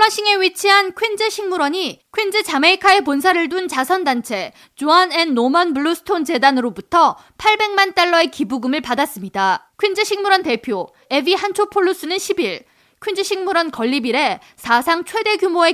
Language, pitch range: Korean, 270-380 Hz